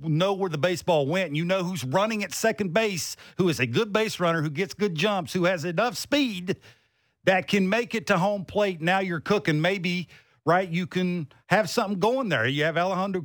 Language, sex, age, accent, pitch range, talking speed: English, male, 50-69, American, 150-200 Hz, 215 wpm